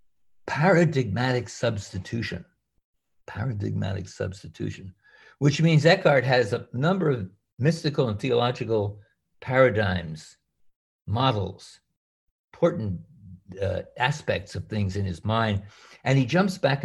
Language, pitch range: English, 100-140 Hz